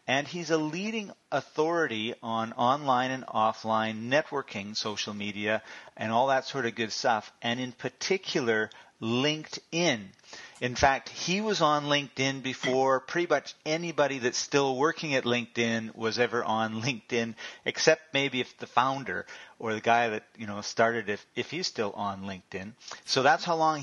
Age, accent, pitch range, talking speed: 40-59, American, 115-145 Hz, 160 wpm